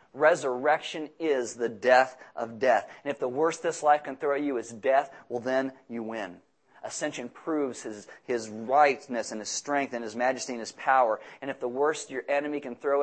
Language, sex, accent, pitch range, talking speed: English, male, American, 135-170 Hz, 205 wpm